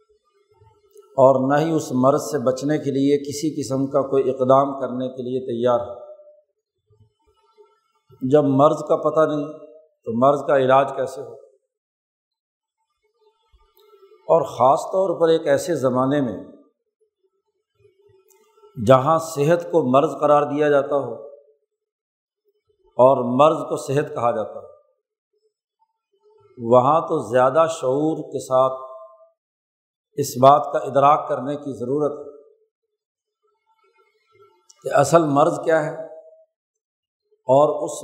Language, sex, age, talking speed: Urdu, male, 50-69, 115 wpm